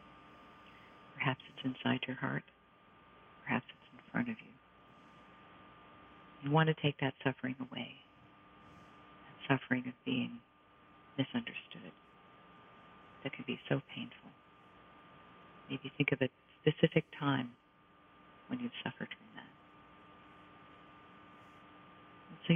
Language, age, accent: English, 50-69, American